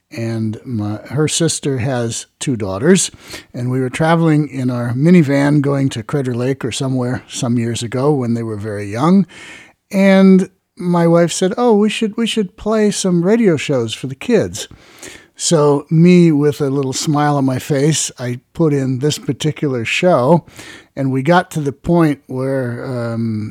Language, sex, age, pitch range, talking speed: English, male, 50-69, 120-155 Hz, 170 wpm